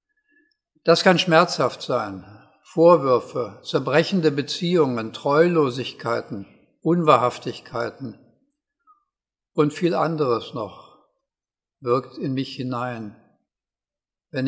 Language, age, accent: German, 60-79, German